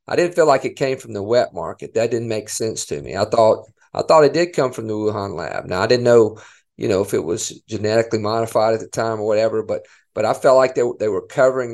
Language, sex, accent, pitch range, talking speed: English, male, American, 105-130 Hz, 265 wpm